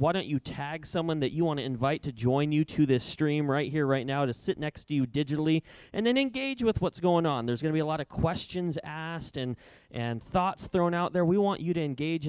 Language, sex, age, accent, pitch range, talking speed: English, male, 20-39, American, 130-165 Hz, 260 wpm